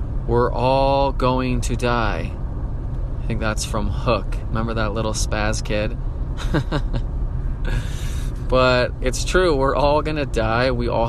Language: English